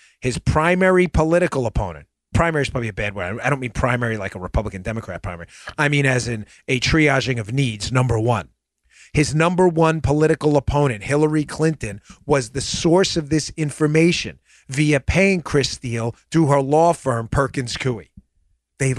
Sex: male